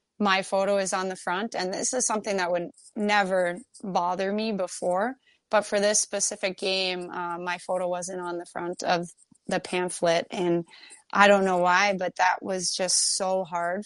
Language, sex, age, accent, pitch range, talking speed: English, female, 20-39, American, 175-190 Hz, 185 wpm